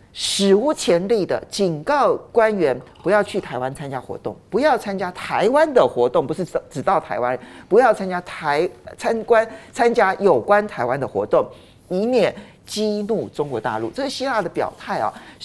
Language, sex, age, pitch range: Chinese, male, 50-69, 160-245 Hz